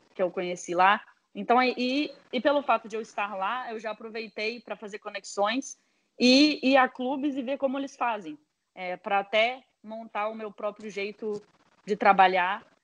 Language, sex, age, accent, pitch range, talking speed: Portuguese, female, 20-39, Brazilian, 180-215 Hz, 180 wpm